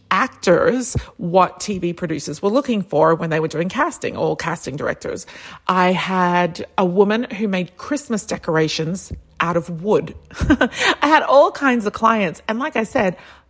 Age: 40-59